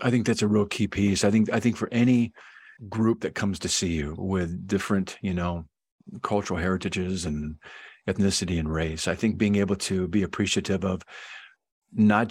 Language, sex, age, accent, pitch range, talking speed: English, male, 50-69, American, 95-115 Hz, 185 wpm